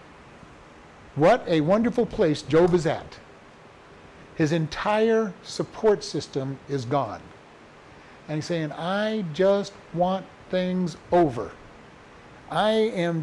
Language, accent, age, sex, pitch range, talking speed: English, American, 50-69, male, 145-190 Hz, 105 wpm